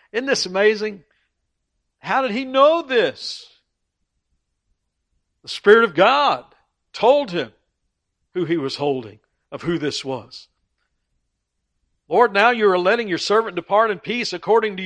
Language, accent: English, American